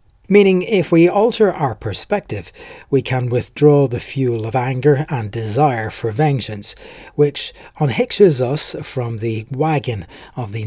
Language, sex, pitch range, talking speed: English, male, 115-155 Hz, 140 wpm